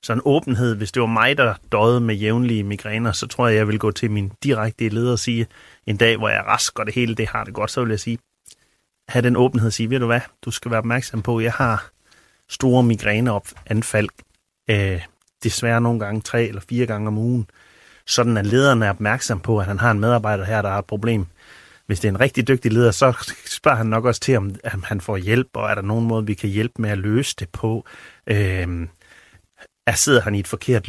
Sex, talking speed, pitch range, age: male, 230 wpm, 105-120 Hz, 30-49